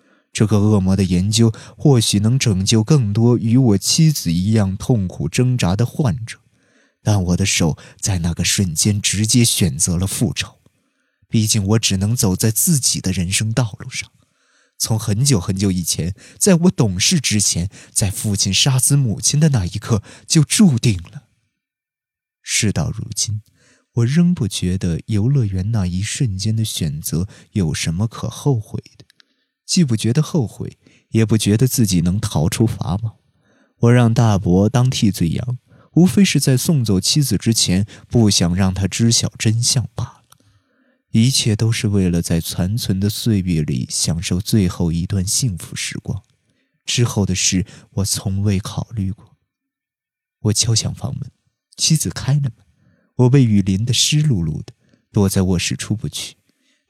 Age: 20-39